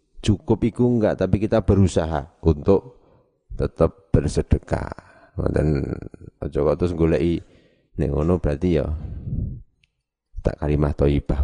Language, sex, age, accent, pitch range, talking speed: Indonesian, male, 30-49, native, 85-105 Hz, 100 wpm